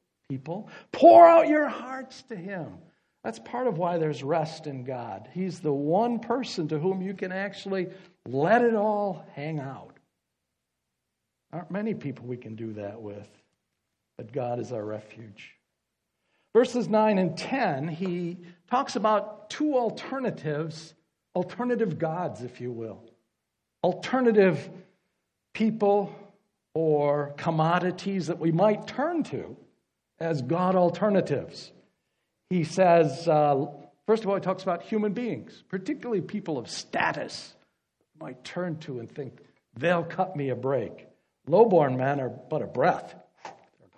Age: 60-79